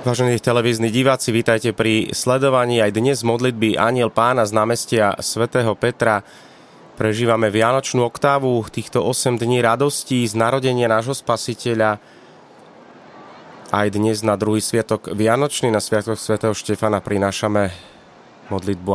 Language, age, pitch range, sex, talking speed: Slovak, 30-49, 100-115 Hz, male, 120 wpm